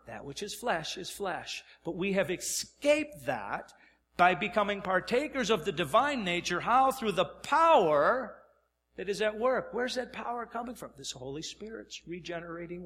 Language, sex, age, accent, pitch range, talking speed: English, male, 50-69, American, 140-225 Hz, 170 wpm